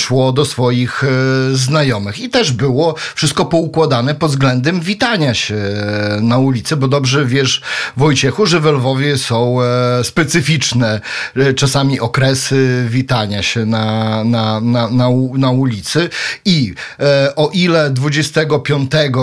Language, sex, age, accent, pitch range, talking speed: Polish, male, 40-59, native, 120-155 Hz, 125 wpm